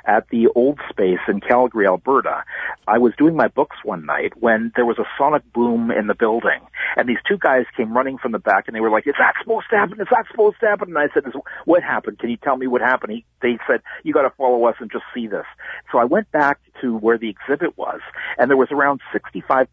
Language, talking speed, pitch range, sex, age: English, 250 wpm, 110-140 Hz, male, 50-69